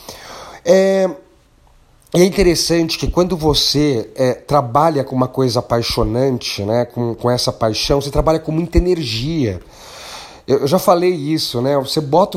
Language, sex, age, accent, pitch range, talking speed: Portuguese, male, 40-59, Brazilian, 120-170 Hz, 140 wpm